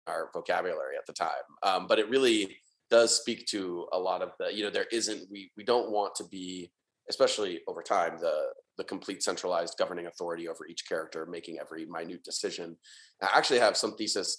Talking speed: 195 wpm